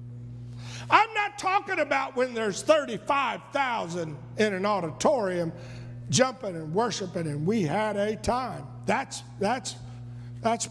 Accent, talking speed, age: American, 125 wpm, 50-69